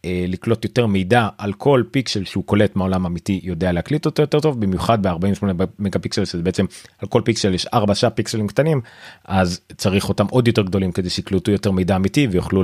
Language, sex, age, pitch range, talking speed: Hebrew, male, 30-49, 90-115 Hz, 190 wpm